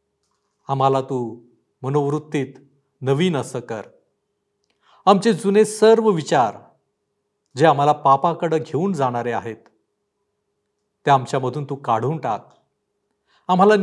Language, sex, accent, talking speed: Marathi, male, native, 95 wpm